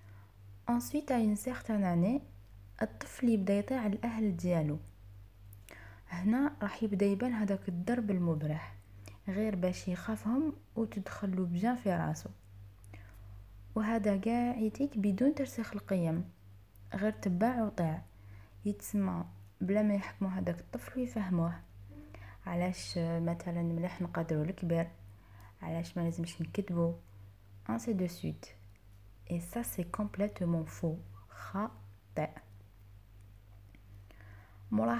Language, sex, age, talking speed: Arabic, female, 20-39, 100 wpm